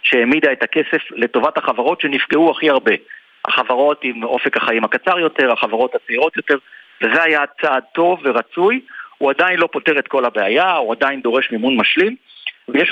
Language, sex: Hebrew, male